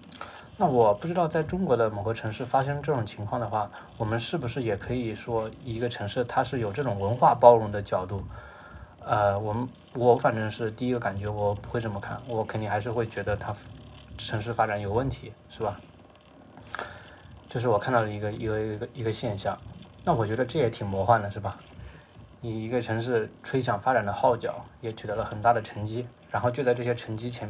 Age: 20-39